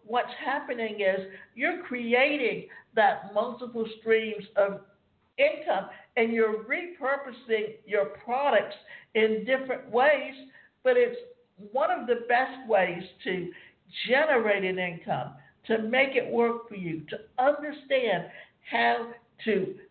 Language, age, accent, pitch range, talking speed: English, 60-79, American, 200-270 Hz, 120 wpm